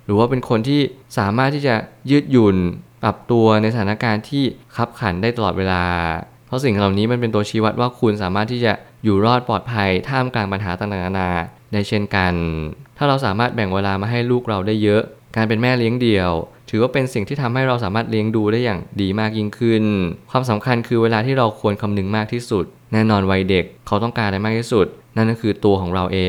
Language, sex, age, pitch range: Thai, male, 20-39, 100-120 Hz